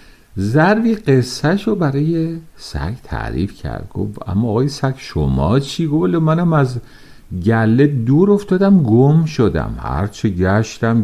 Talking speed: 120 wpm